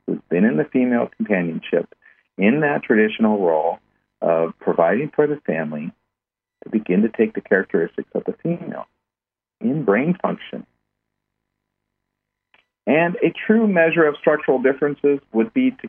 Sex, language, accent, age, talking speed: male, English, American, 50-69, 140 wpm